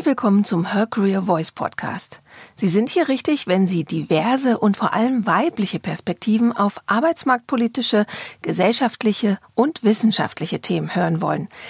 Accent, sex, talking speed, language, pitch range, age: German, female, 135 wpm, German, 195-250 Hz, 40-59